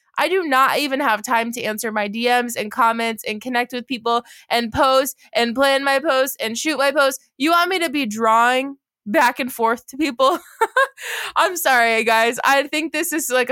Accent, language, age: American, English, 20-39